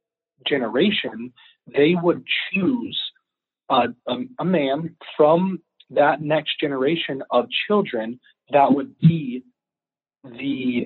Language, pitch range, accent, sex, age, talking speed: English, 130-170 Hz, American, male, 30-49, 95 wpm